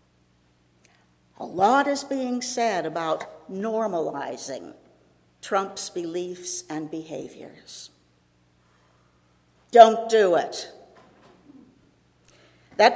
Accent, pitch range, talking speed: American, 135-215 Hz, 70 wpm